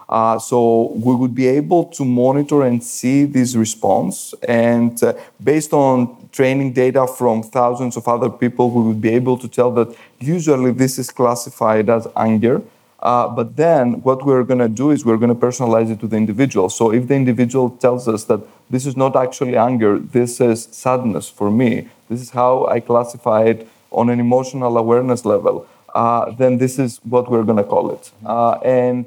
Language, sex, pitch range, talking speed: English, male, 115-130 Hz, 190 wpm